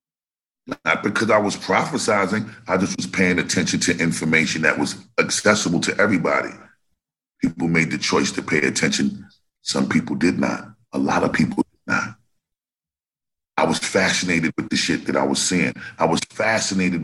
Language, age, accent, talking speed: English, 40-59, American, 165 wpm